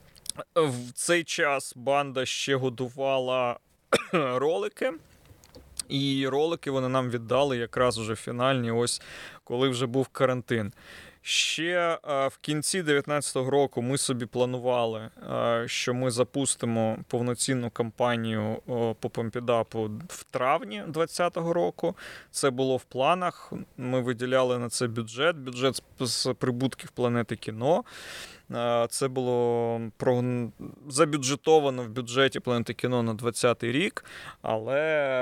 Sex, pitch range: male, 120-135 Hz